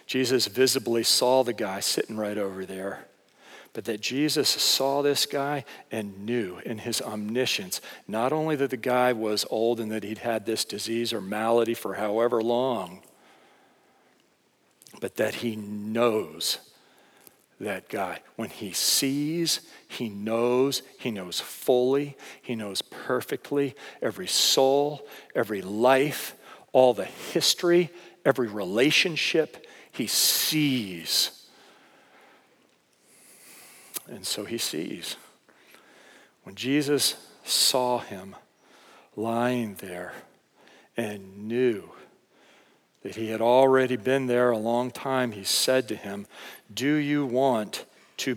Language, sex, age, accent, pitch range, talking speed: English, male, 50-69, American, 110-130 Hz, 120 wpm